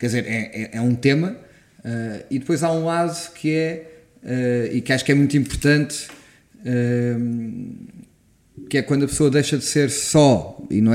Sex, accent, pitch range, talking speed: male, Portuguese, 110-145 Hz, 170 wpm